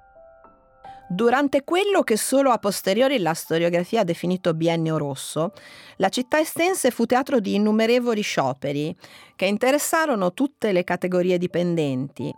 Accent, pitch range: native, 165-260 Hz